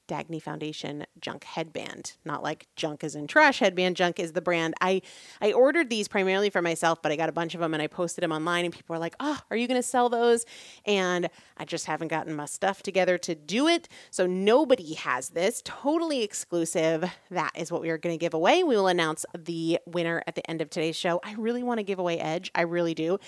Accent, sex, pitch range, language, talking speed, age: American, female, 165-220 Hz, English, 235 wpm, 30-49